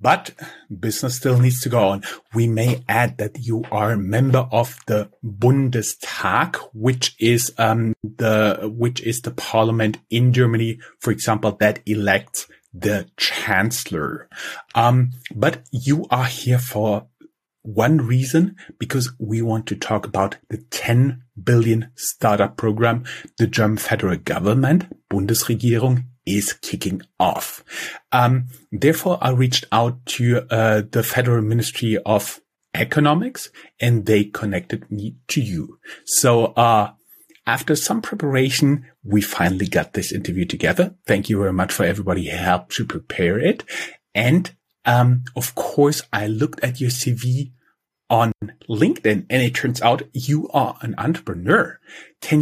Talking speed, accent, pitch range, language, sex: 140 wpm, German, 110-130 Hz, English, male